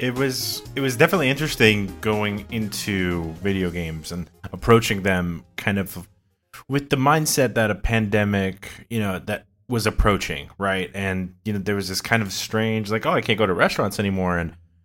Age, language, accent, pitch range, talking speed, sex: 20-39, English, American, 95-115 Hz, 180 wpm, male